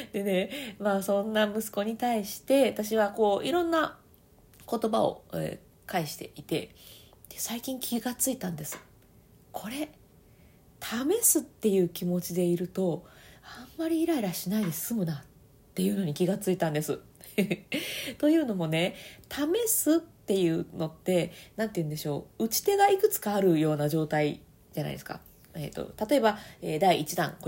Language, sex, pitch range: Japanese, female, 170-265 Hz